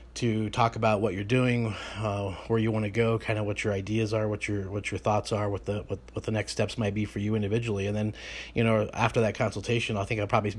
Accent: American